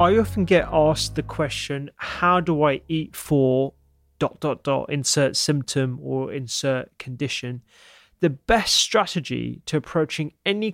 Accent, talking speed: British, 140 wpm